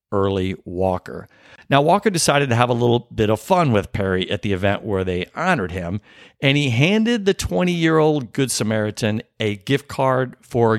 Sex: male